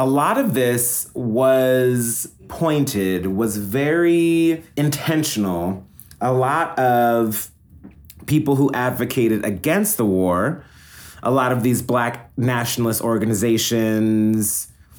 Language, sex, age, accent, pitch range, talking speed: English, male, 30-49, American, 105-135 Hz, 100 wpm